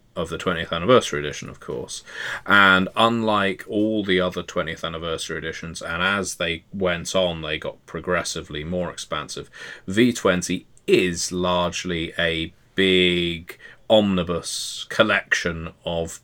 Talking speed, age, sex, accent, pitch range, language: 120 wpm, 30-49, male, British, 85-95 Hz, English